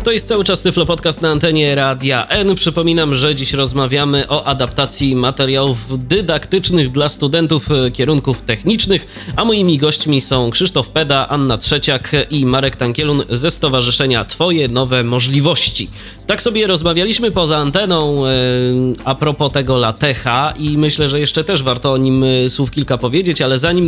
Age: 20-39